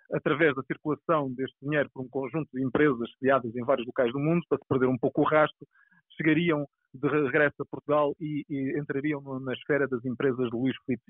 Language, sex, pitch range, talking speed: Portuguese, male, 125-155 Hz, 205 wpm